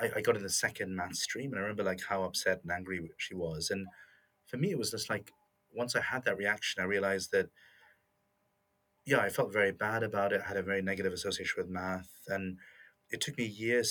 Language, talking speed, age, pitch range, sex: English, 220 wpm, 30-49, 90-115 Hz, male